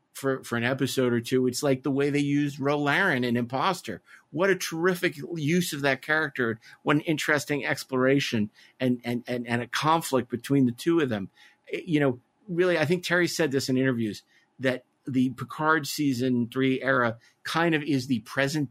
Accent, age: American, 50-69